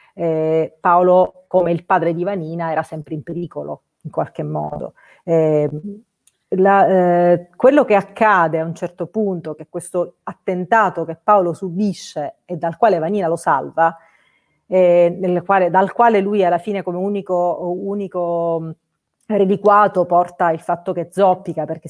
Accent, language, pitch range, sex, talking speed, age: native, Italian, 165-205 Hz, female, 140 wpm, 40-59